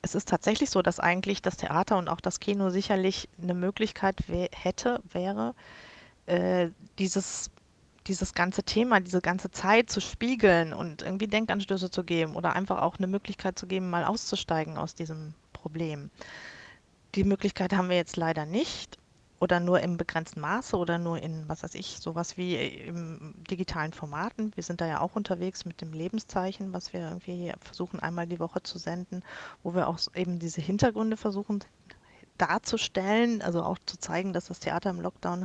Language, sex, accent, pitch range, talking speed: German, female, German, 175-205 Hz, 175 wpm